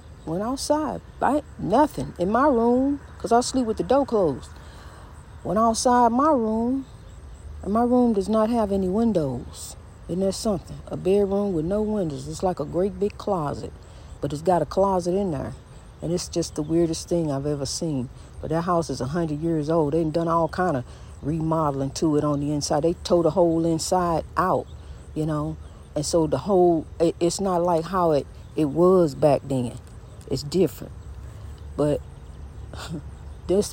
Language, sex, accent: English, female, American